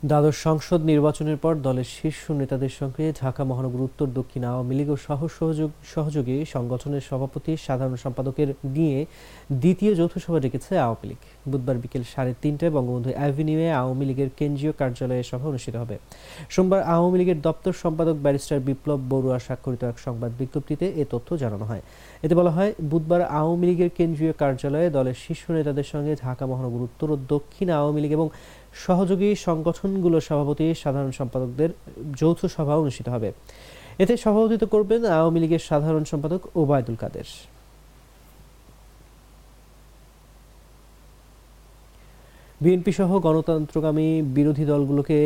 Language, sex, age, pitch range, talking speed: English, male, 30-49, 135-160 Hz, 85 wpm